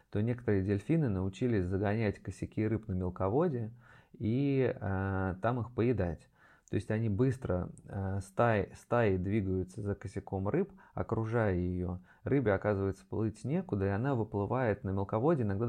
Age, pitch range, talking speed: 20-39, 95-115 Hz, 140 wpm